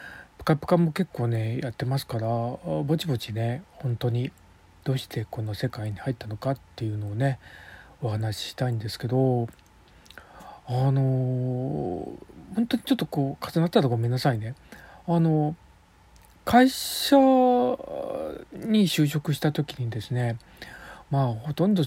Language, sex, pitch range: Japanese, male, 115-165 Hz